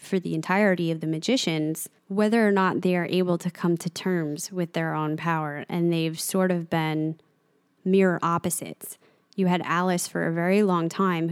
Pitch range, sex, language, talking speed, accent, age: 165-195 Hz, female, English, 185 wpm, American, 20-39